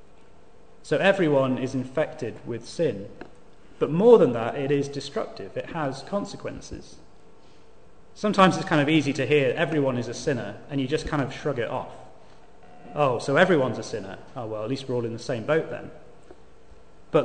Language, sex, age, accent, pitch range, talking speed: English, male, 30-49, British, 130-165 Hz, 180 wpm